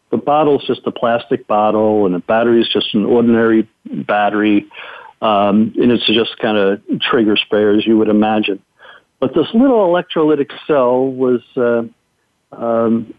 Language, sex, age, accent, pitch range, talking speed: English, male, 50-69, American, 115-135 Hz, 160 wpm